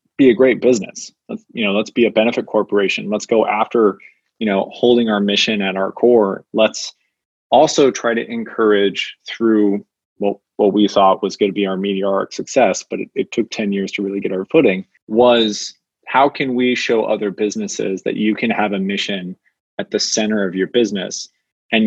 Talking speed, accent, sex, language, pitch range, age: 190 wpm, American, male, English, 100-115 Hz, 20-39